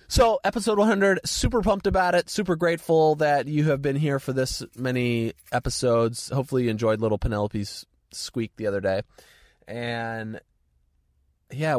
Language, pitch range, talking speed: English, 105-150 Hz, 150 wpm